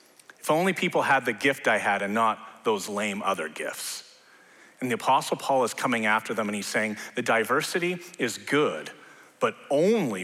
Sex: male